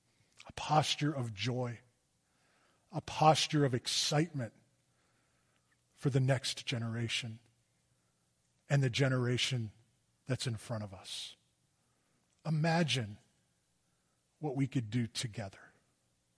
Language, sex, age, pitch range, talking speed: English, male, 40-59, 115-150 Hz, 95 wpm